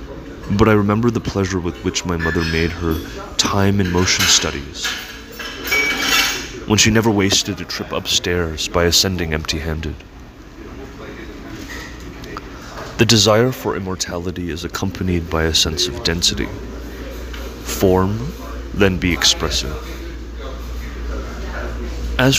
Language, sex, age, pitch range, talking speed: English, male, 30-49, 80-105 Hz, 105 wpm